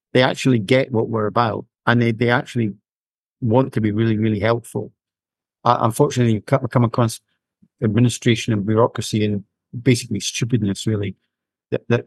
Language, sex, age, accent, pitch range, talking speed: English, male, 50-69, British, 110-120 Hz, 145 wpm